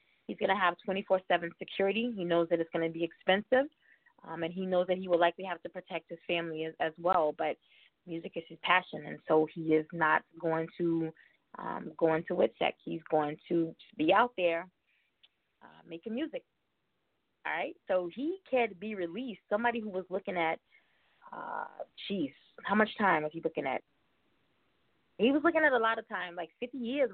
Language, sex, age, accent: English, female, 20-39, American